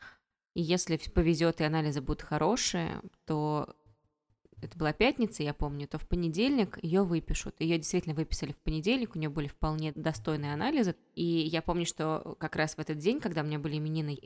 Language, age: Russian, 20-39